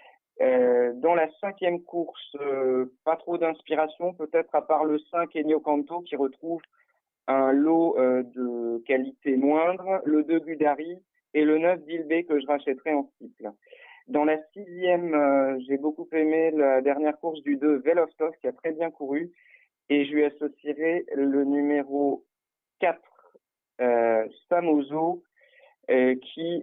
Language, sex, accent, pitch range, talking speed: French, male, French, 140-170 Hz, 145 wpm